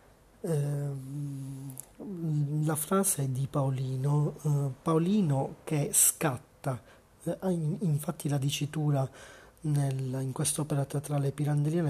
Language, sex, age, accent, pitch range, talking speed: Italian, male, 40-59, native, 135-155 Hz, 75 wpm